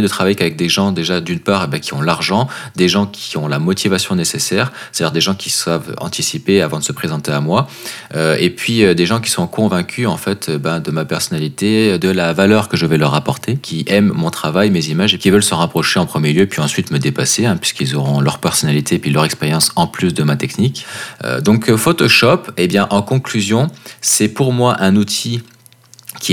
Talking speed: 230 wpm